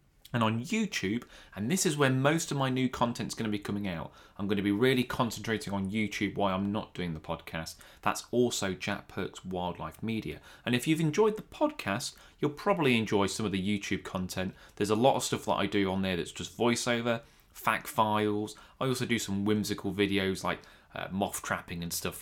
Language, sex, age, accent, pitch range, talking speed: English, male, 20-39, British, 100-130 Hz, 215 wpm